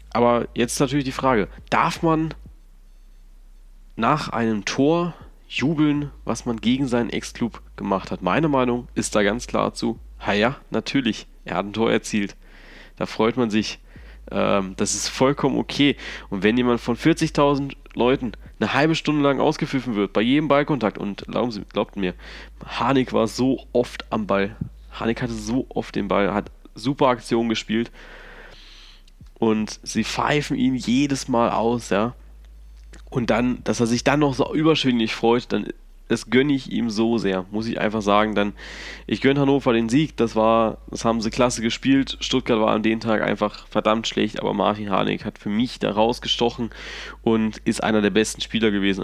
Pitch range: 100-135 Hz